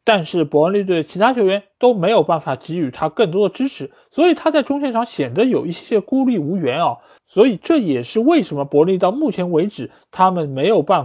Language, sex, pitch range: Chinese, male, 150-235 Hz